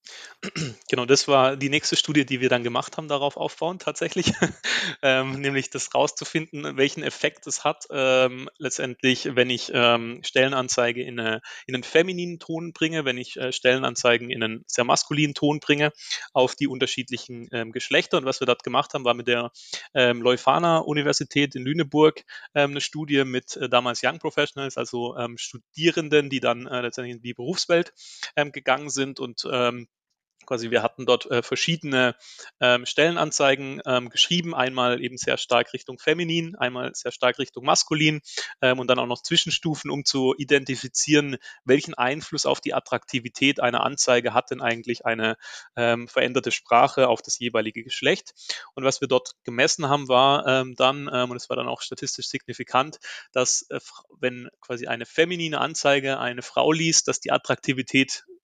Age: 30-49